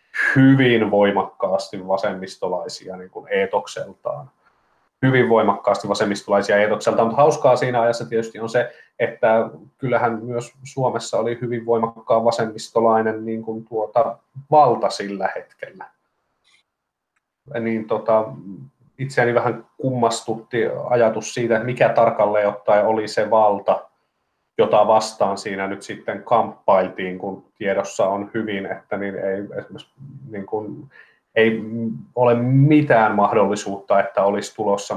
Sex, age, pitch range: male, 30-49, 100-125 Hz